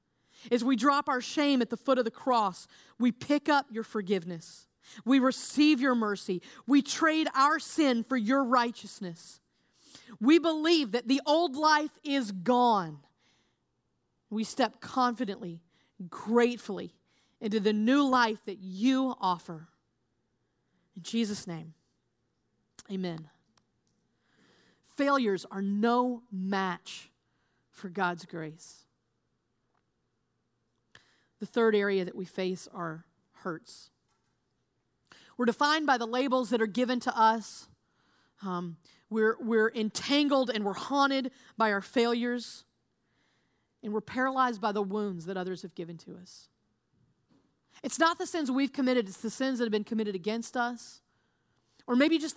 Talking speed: 130 wpm